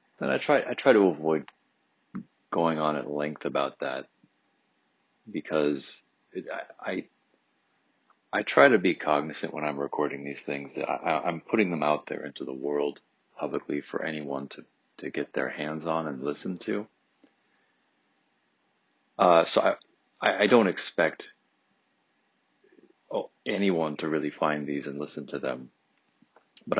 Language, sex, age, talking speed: English, male, 40-59, 145 wpm